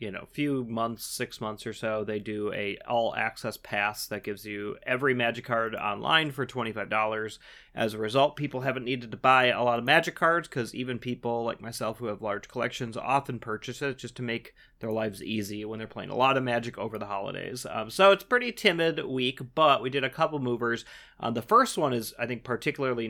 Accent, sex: American, male